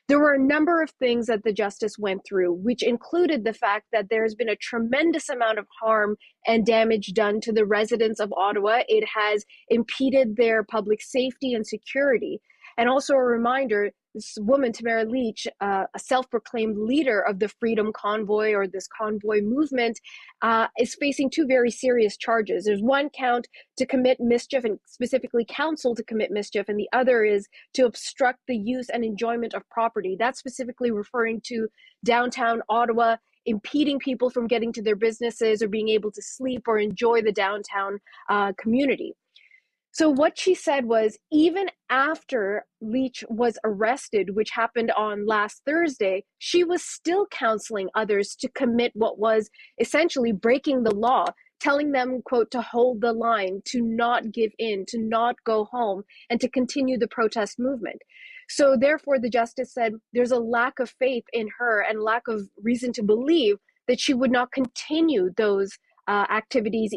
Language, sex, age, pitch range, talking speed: English, female, 30-49, 215-260 Hz, 170 wpm